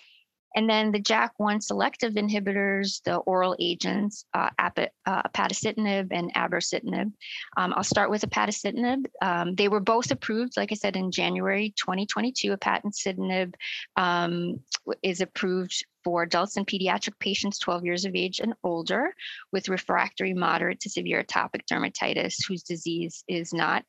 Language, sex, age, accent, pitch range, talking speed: English, female, 30-49, American, 175-205 Hz, 140 wpm